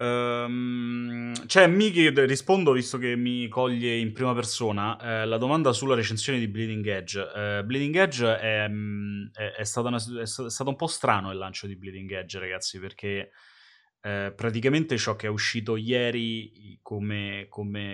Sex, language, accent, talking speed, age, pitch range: male, Italian, native, 155 wpm, 20-39, 100-120 Hz